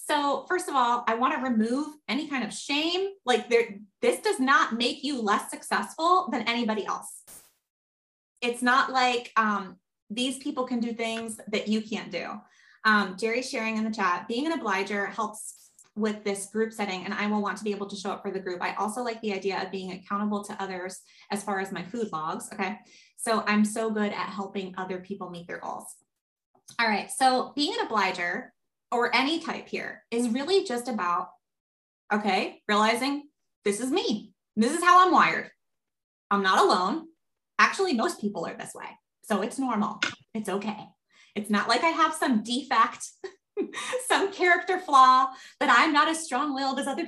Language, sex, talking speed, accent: English, female, 185 wpm, American